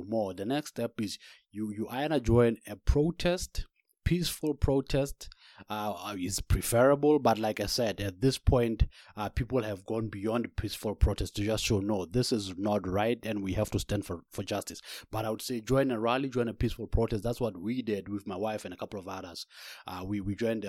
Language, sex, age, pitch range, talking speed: English, male, 30-49, 100-120 Hz, 210 wpm